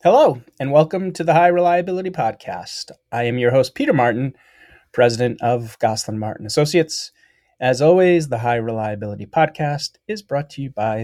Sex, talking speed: male, 165 wpm